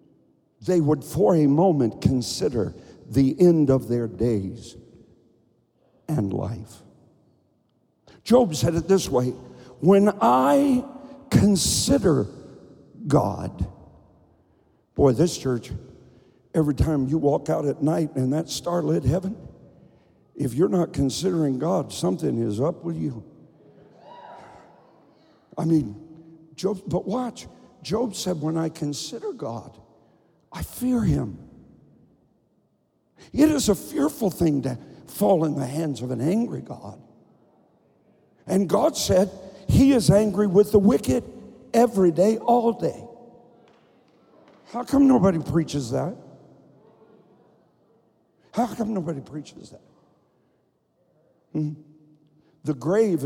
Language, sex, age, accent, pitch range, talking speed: English, male, 60-79, American, 130-195 Hz, 110 wpm